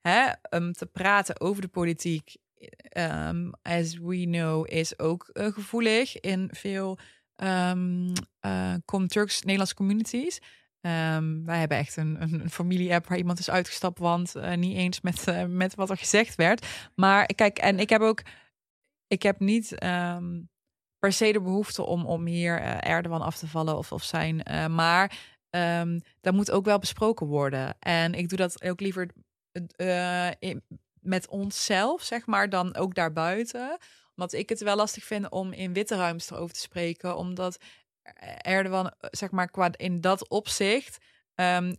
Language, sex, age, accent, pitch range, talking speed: Dutch, female, 20-39, Dutch, 170-195 Hz, 165 wpm